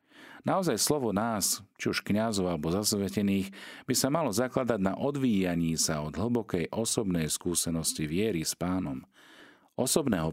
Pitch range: 85-115 Hz